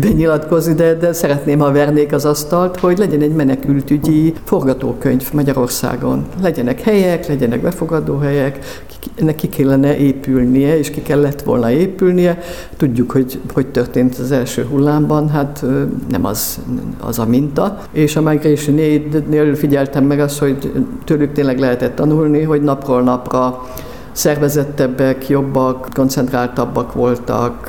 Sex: female